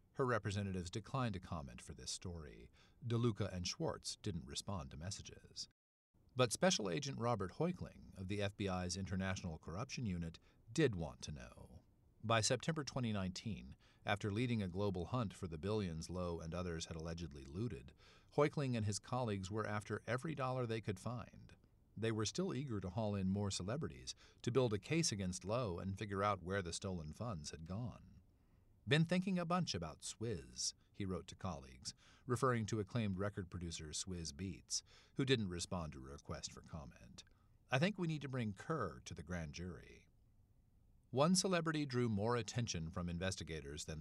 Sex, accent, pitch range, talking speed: male, American, 90-115 Hz, 170 wpm